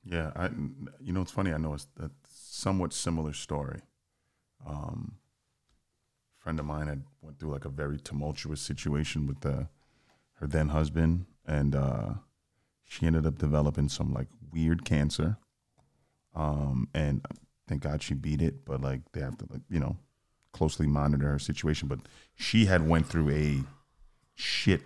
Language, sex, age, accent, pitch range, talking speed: English, male, 30-49, American, 75-85 Hz, 160 wpm